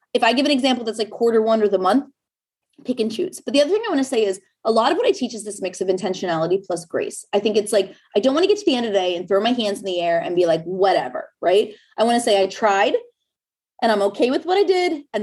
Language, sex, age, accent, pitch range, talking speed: English, female, 20-39, American, 195-260 Hz, 305 wpm